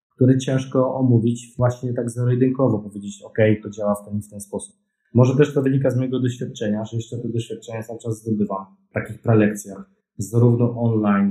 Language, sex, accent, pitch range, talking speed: Polish, male, native, 105-125 Hz, 175 wpm